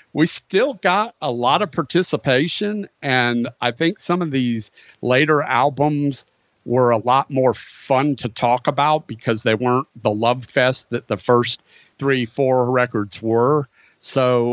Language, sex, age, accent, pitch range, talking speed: English, male, 50-69, American, 115-140 Hz, 155 wpm